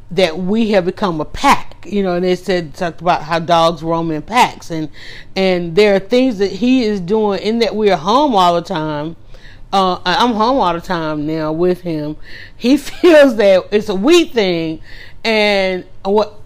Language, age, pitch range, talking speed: English, 40-59, 175-235 Hz, 195 wpm